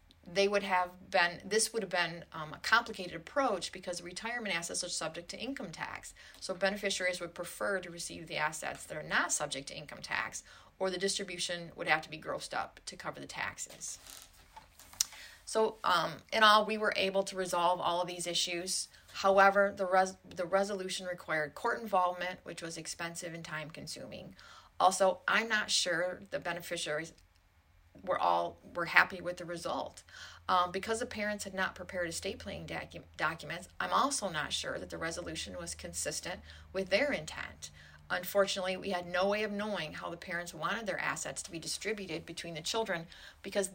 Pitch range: 165-195 Hz